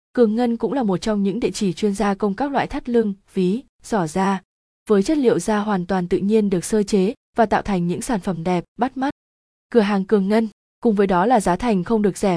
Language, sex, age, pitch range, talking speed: Vietnamese, female, 20-39, 190-235 Hz, 250 wpm